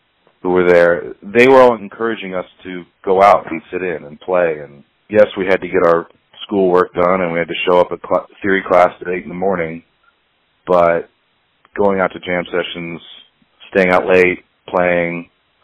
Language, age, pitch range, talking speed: English, 40-59, 90-110 Hz, 190 wpm